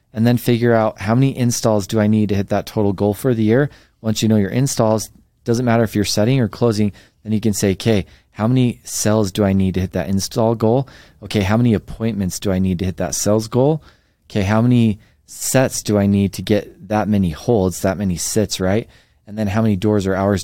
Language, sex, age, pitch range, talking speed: English, male, 20-39, 95-110 Hz, 240 wpm